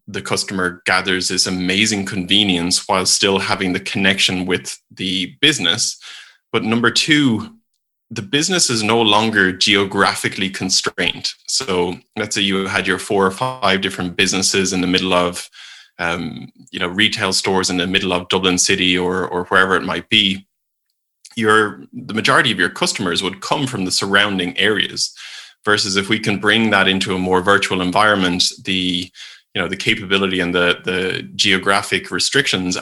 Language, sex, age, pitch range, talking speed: English, male, 20-39, 90-105 Hz, 165 wpm